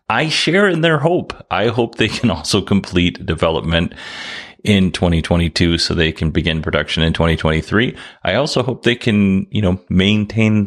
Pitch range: 85-105 Hz